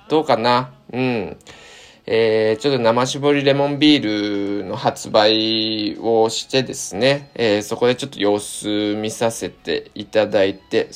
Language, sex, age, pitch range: Japanese, male, 20-39, 100-130 Hz